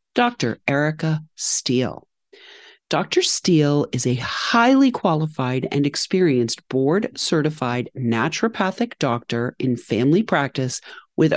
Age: 40-59